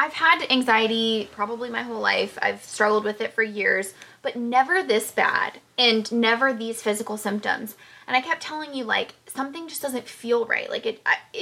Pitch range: 210-260 Hz